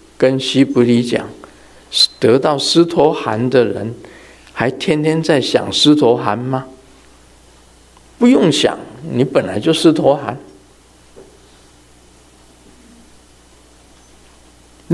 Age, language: 50-69, Chinese